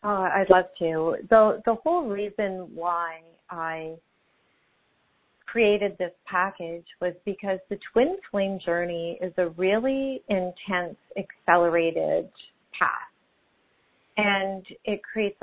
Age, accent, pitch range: 40-59, American, 175-205 Hz